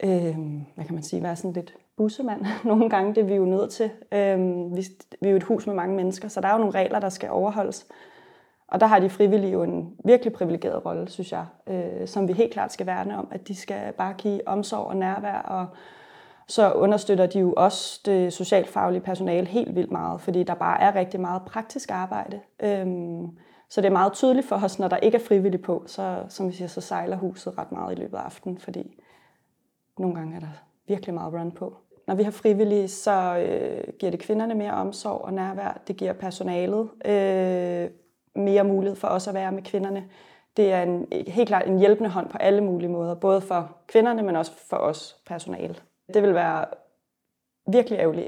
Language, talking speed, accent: Danish, 205 wpm, native